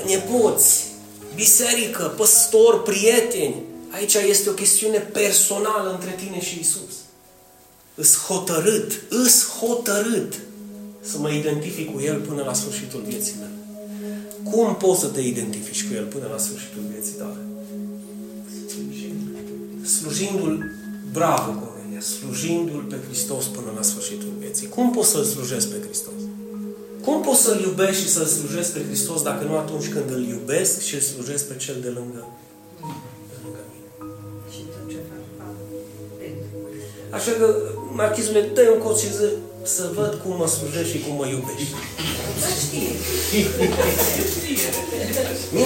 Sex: male